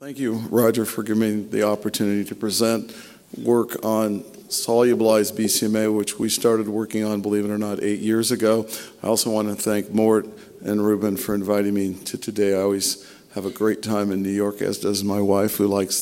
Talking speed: 200 wpm